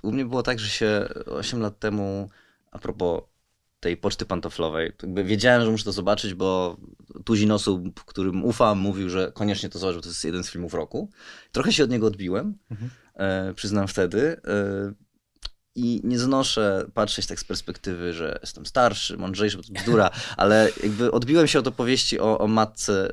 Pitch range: 100-125 Hz